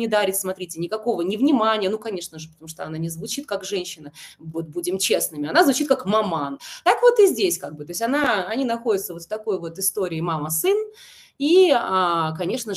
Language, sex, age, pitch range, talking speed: Russian, female, 20-39, 165-235 Hz, 195 wpm